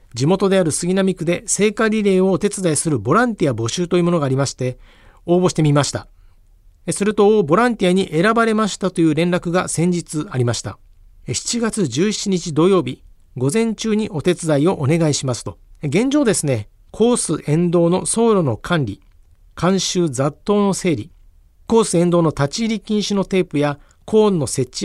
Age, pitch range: 50-69, 140-190 Hz